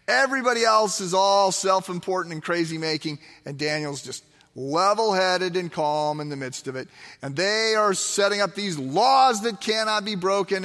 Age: 40-59